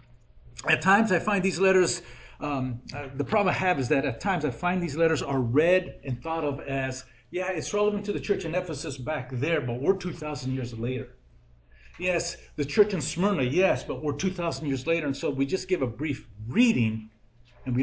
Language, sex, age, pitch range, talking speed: English, male, 50-69, 125-180 Hz, 210 wpm